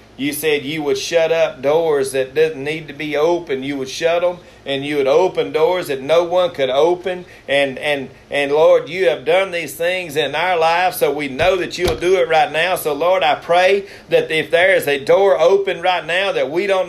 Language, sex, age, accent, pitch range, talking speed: English, male, 40-59, American, 125-205 Hz, 225 wpm